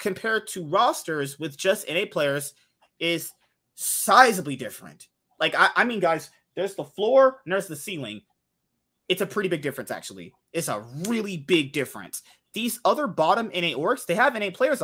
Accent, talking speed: American, 170 wpm